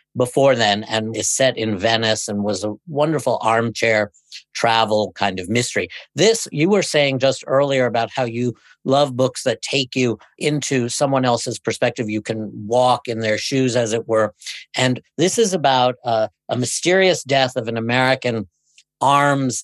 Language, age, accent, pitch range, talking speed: English, 50-69, American, 115-145 Hz, 170 wpm